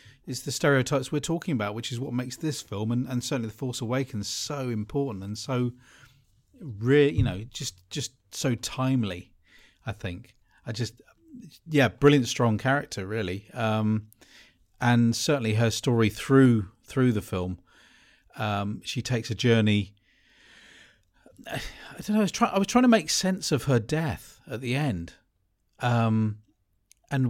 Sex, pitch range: male, 110-140 Hz